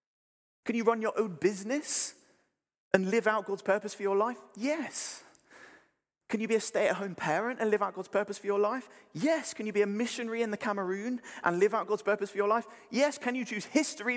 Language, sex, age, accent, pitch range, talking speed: English, male, 30-49, British, 170-225 Hz, 215 wpm